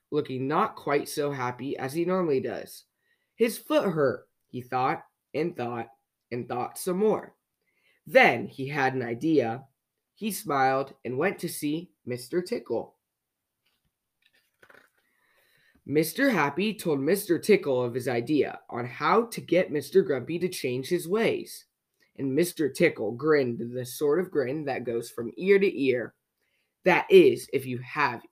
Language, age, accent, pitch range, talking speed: English, 20-39, American, 130-190 Hz, 150 wpm